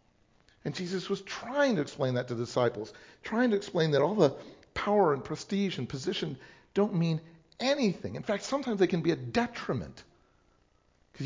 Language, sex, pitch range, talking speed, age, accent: English, male, 145-215 Hz, 175 wpm, 50-69, American